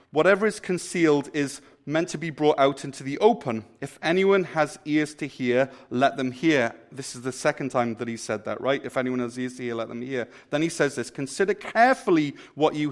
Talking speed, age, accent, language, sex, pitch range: 225 wpm, 30-49, British, English, male, 135-175 Hz